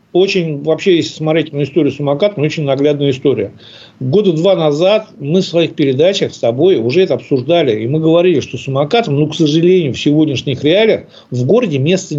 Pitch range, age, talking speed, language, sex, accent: 145-185 Hz, 60-79, 175 wpm, Russian, male, native